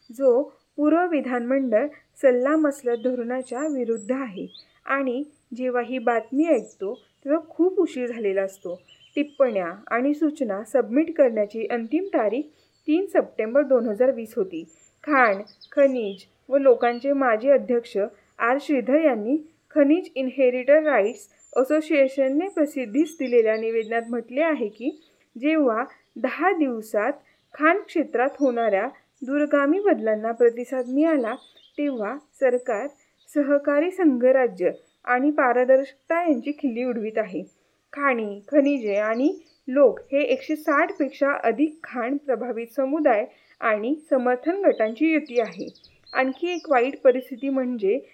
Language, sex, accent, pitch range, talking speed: Marathi, female, native, 240-295 Hz, 110 wpm